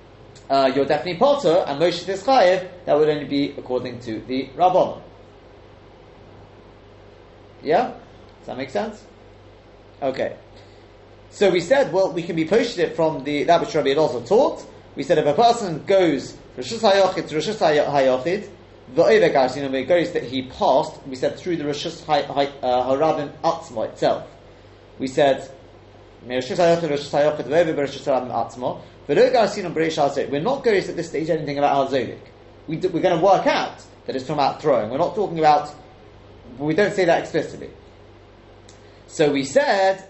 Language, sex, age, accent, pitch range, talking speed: English, male, 30-49, British, 110-170 Hz, 155 wpm